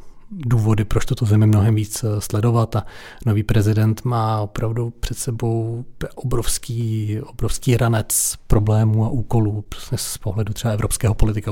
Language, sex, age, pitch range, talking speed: Czech, male, 40-59, 110-120 Hz, 135 wpm